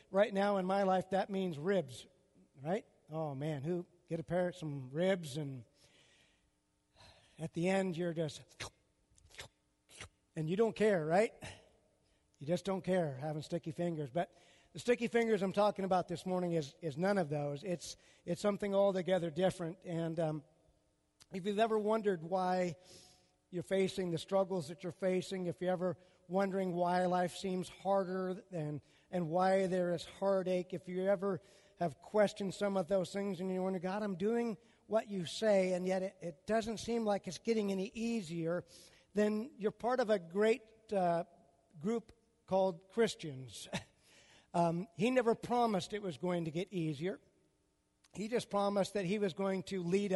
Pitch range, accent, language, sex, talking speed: 170-200 Hz, American, English, male, 170 wpm